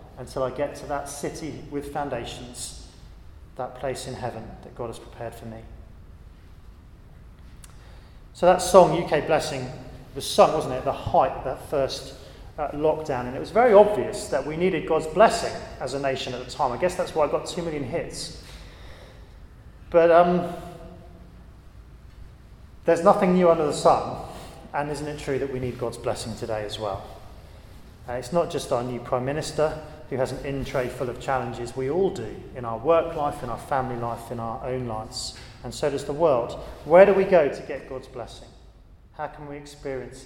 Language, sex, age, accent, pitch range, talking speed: English, male, 30-49, British, 115-150 Hz, 185 wpm